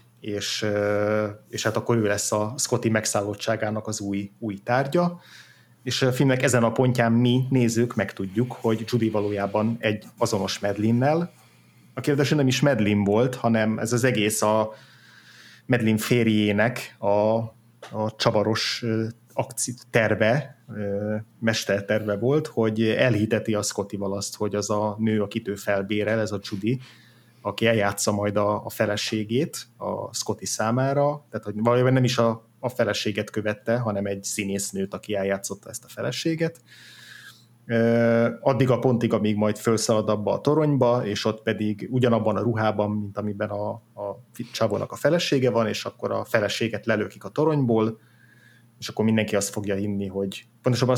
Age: 30-49